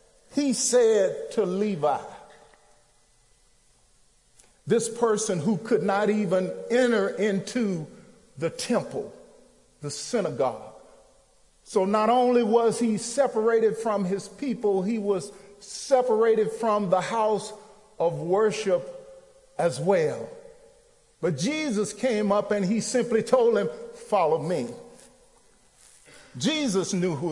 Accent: American